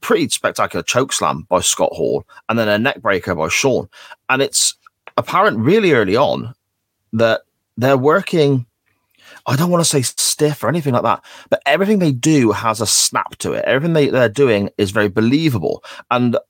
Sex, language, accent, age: male, English, British, 30-49